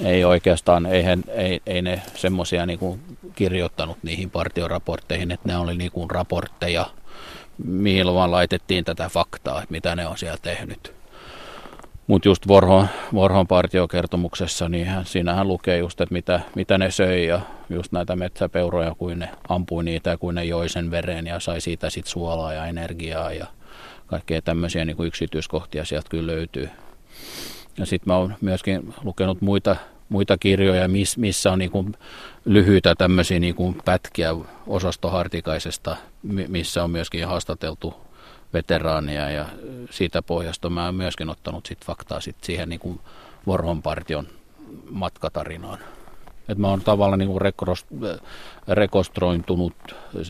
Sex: male